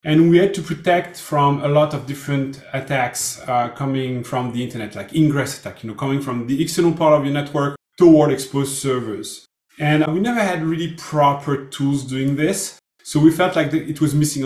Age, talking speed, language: 30-49, 205 wpm, English